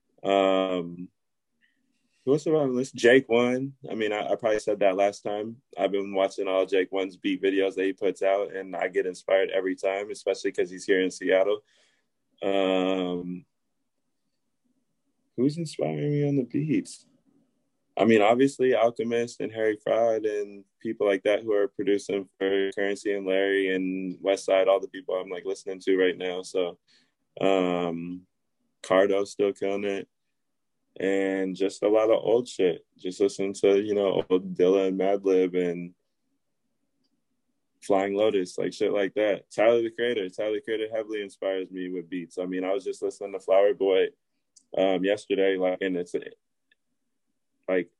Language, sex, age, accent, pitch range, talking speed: English, male, 20-39, American, 95-145 Hz, 160 wpm